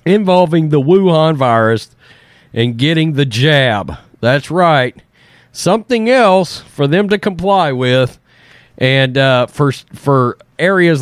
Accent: American